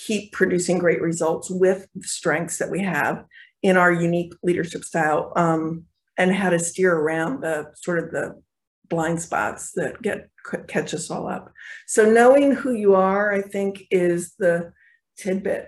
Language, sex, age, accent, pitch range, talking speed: English, female, 50-69, American, 175-205 Hz, 165 wpm